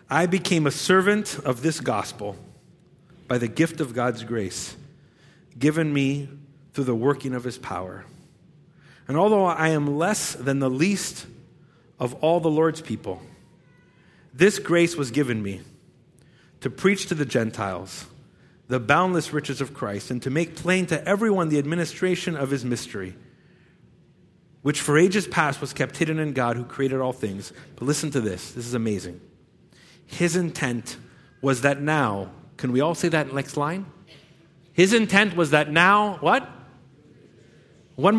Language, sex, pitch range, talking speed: English, male, 135-180 Hz, 155 wpm